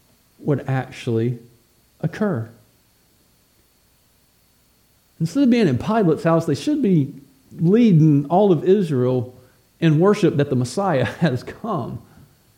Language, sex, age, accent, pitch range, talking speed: English, male, 50-69, American, 130-200 Hz, 110 wpm